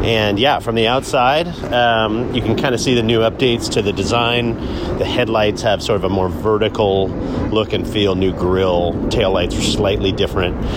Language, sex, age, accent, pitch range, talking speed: English, male, 40-59, American, 90-115 Hz, 190 wpm